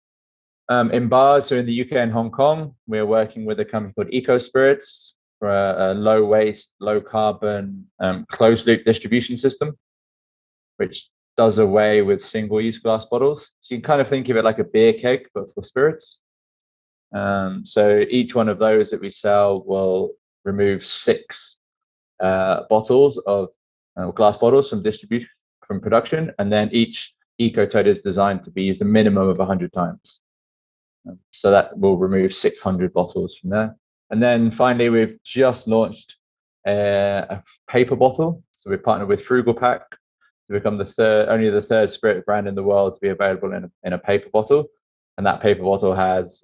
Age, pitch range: 20-39, 100-120 Hz